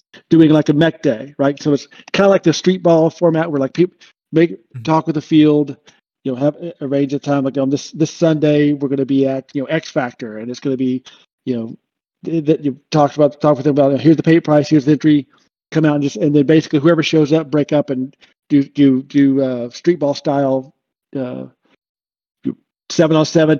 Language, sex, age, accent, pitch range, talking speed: English, male, 50-69, American, 135-160 Hz, 235 wpm